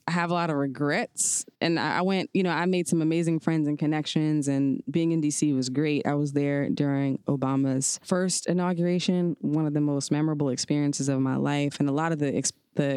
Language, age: English, 20-39